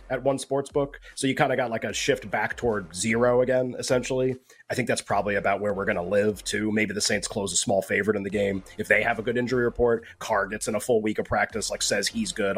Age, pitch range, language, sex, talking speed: 30-49, 100-125 Hz, English, male, 270 wpm